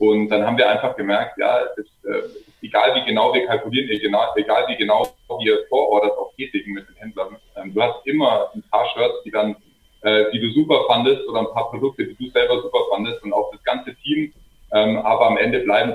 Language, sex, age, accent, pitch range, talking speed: German, male, 30-49, German, 105-145 Hz, 220 wpm